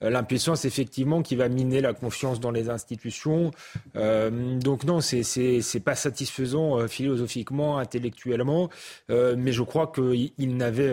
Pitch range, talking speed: 130-160 Hz, 155 wpm